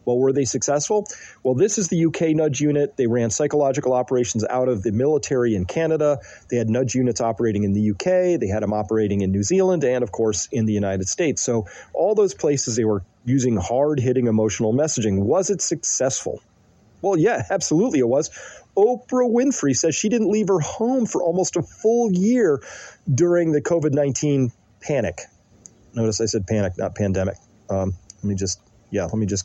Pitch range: 110-150 Hz